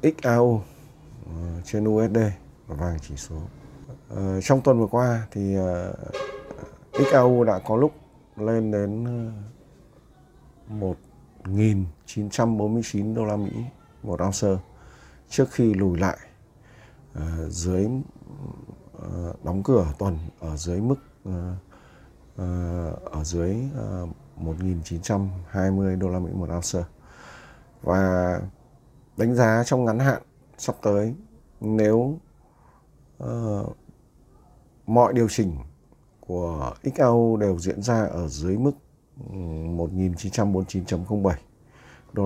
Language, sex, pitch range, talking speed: Vietnamese, male, 90-115 Hz, 110 wpm